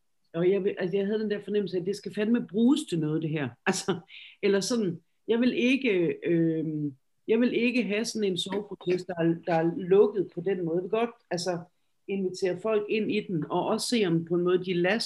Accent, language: native, Danish